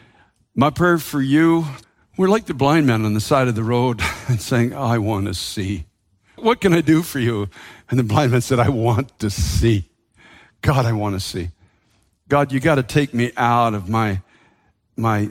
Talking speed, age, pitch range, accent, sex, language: 200 wpm, 60-79, 110-155 Hz, American, male, English